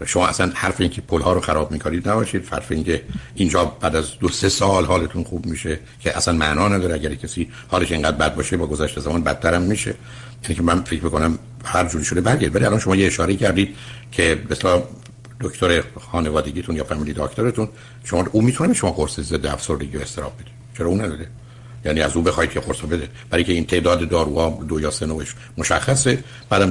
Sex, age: male, 60-79